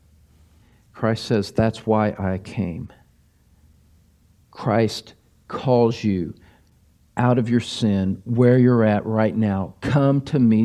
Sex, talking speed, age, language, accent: male, 120 wpm, 50-69, English, American